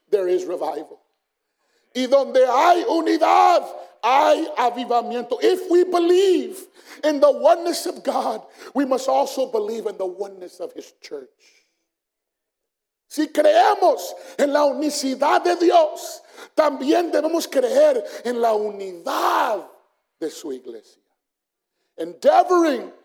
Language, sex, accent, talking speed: English, male, American, 115 wpm